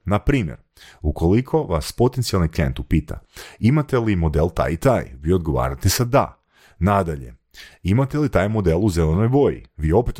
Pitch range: 80-115 Hz